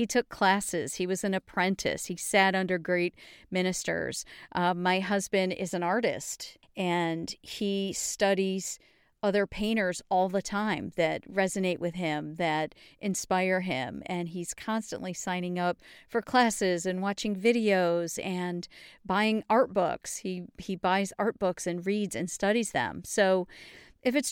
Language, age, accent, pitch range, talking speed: English, 40-59, American, 175-210 Hz, 150 wpm